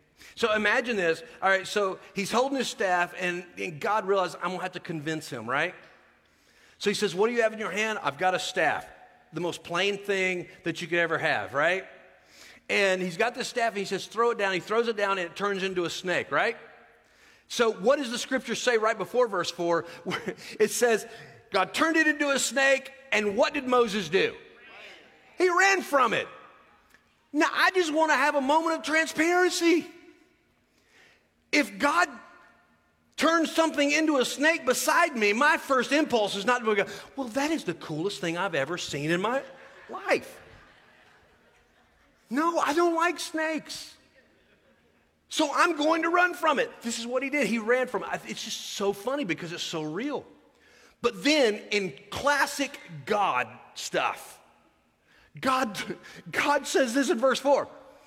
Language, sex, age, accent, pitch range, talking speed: English, male, 40-59, American, 195-295 Hz, 180 wpm